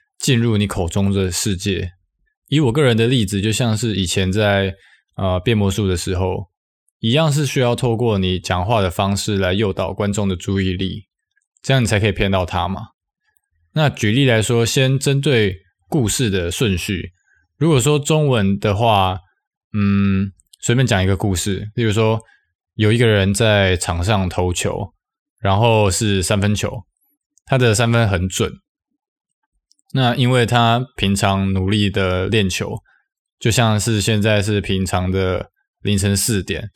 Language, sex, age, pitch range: Chinese, male, 20-39, 95-125 Hz